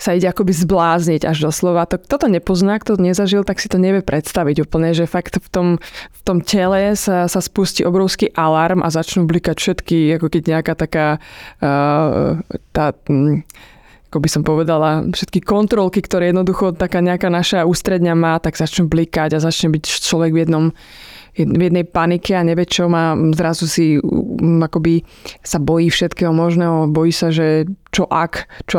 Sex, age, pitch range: female, 20-39, 160-185 Hz